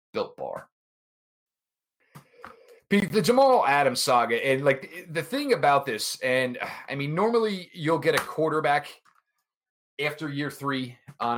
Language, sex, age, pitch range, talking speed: English, male, 30-49, 125-170 Hz, 125 wpm